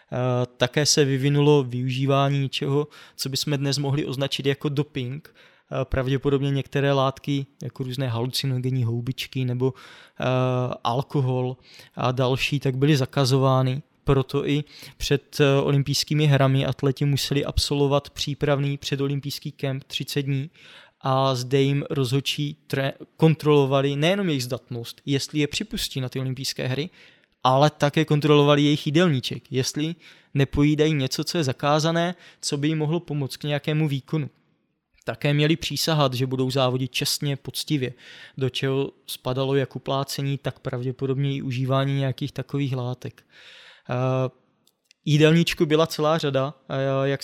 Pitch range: 130-145 Hz